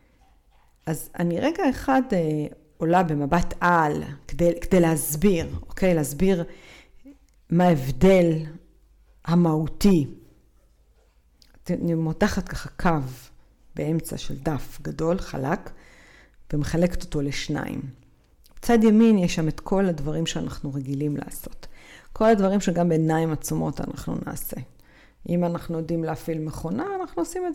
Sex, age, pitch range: female, 50-69, 155-205 Hz